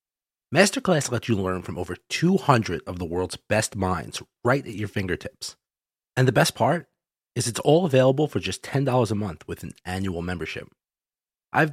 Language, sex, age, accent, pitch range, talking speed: English, male, 30-49, American, 95-130 Hz, 175 wpm